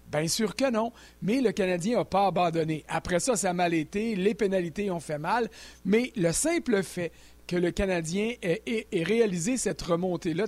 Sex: male